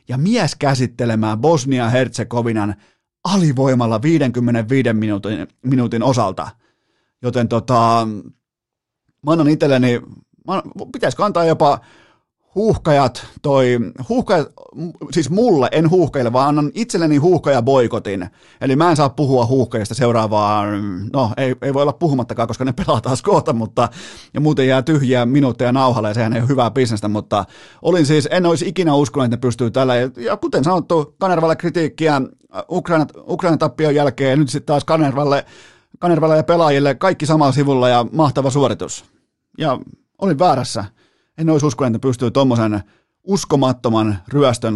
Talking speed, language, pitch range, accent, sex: 135 wpm, Finnish, 115-150 Hz, native, male